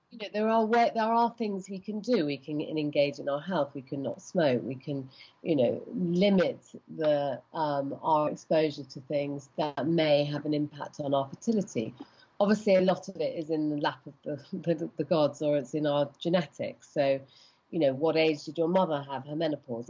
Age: 40-59